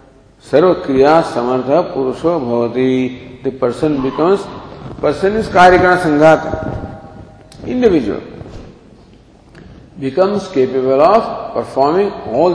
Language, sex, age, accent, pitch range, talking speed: English, male, 50-69, Indian, 130-185 Hz, 85 wpm